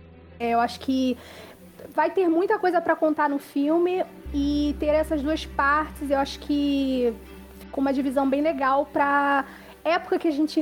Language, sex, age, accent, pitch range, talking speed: Portuguese, female, 20-39, Brazilian, 260-305 Hz, 165 wpm